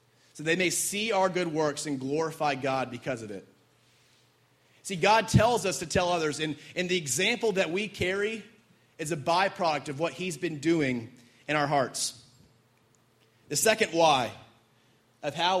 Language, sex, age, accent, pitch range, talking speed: English, male, 30-49, American, 130-180 Hz, 165 wpm